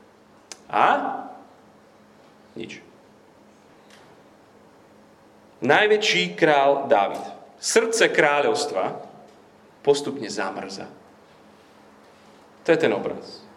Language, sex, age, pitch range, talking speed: Slovak, male, 40-59, 120-160 Hz, 55 wpm